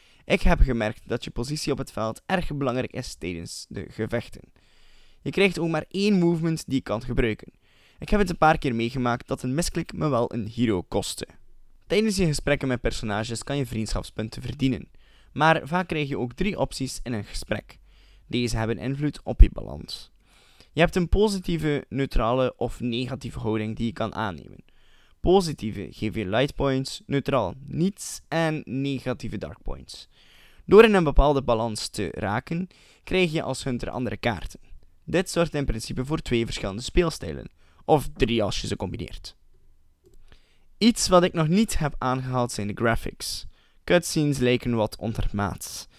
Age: 20-39